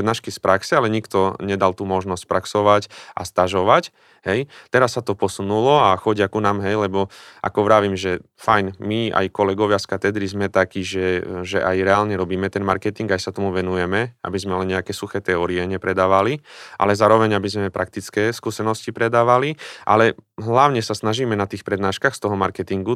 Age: 30-49